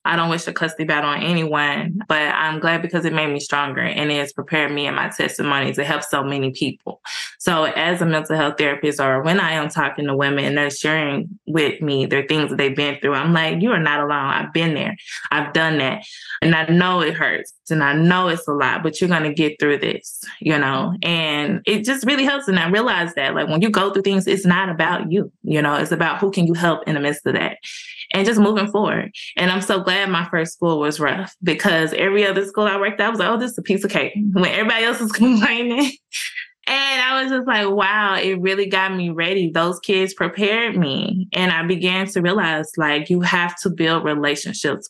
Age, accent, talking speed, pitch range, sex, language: 20-39, American, 235 wpm, 155-205 Hz, female, English